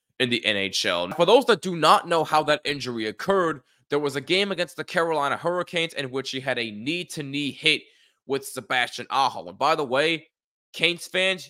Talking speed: 205 wpm